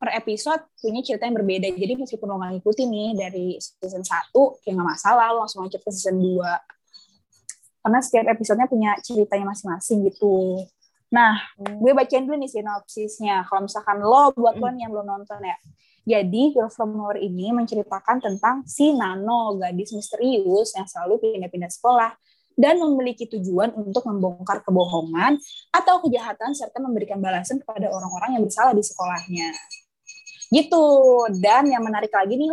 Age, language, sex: 20-39, Indonesian, female